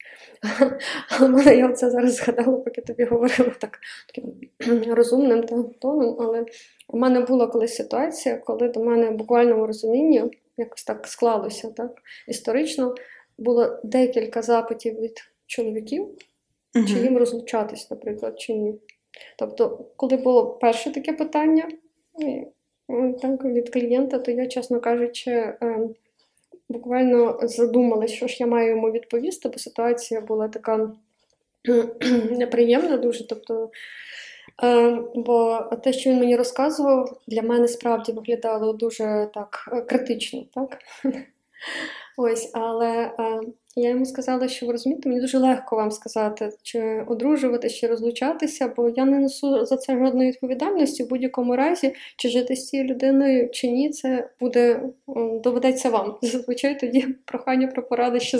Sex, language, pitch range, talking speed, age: female, Ukrainian, 230-260 Hz, 130 wpm, 20-39